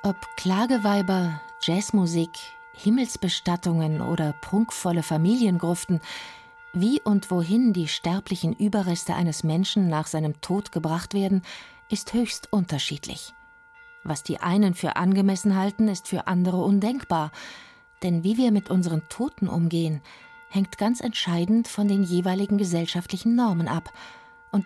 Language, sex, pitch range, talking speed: German, female, 165-205 Hz, 120 wpm